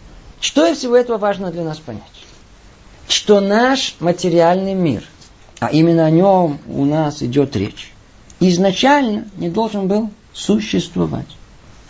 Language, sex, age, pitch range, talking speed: Russian, male, 50-69, 145-220 Hz, 125 wpm